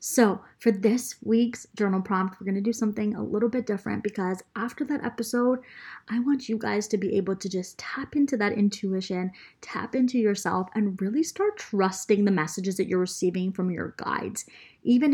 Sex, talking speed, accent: female, 190 wpm, American